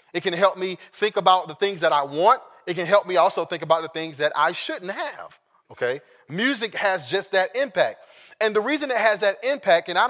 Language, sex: English, male